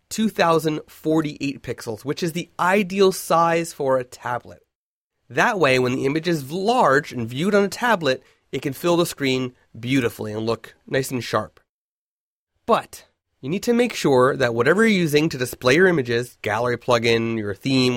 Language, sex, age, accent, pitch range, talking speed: English, male, 30-49, American, 120-165 Hz, 170 wpm